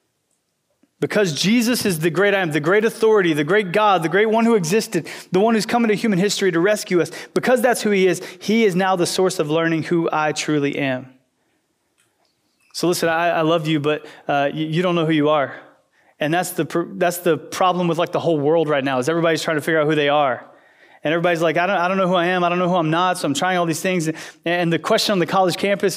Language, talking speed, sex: English, 260 wpm, male